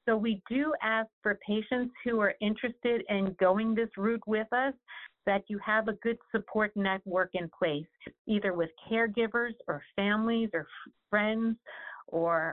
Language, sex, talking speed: English, female, 155 wpm